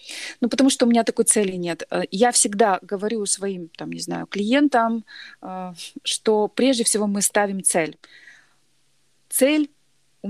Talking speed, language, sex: 140 wpm, Russian, female